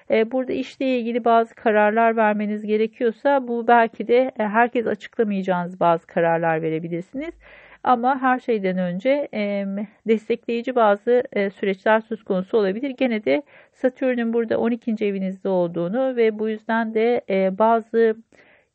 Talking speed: 120 wpm